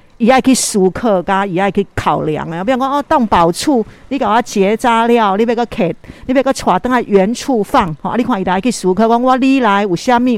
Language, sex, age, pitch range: Chinese, female, 50-69, 180-245 Hz